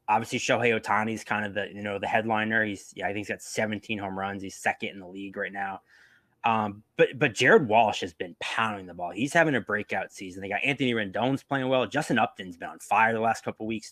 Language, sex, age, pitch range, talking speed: English, male, 20-39, 105-130 Hz, 245 wpm